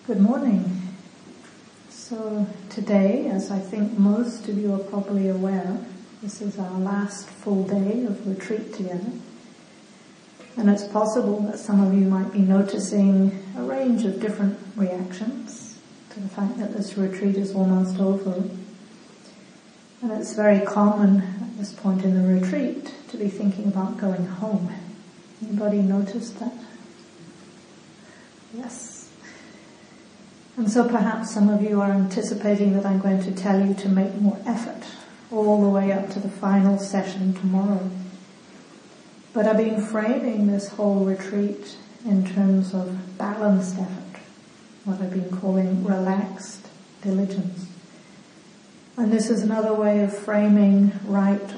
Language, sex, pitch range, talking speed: English, female, 195-215 Hz, 140 wpm